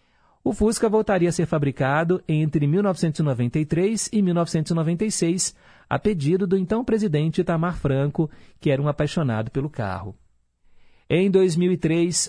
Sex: male